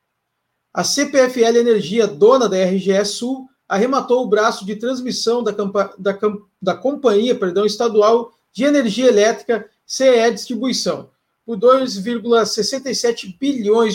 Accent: Brazilian